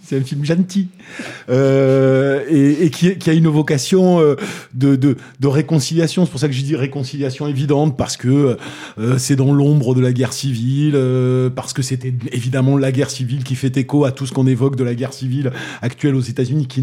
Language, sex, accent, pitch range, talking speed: French, male, French, 130-165 Hz, 215 wpm